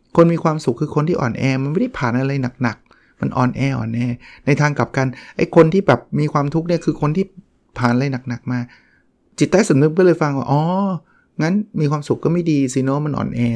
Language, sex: Thai, male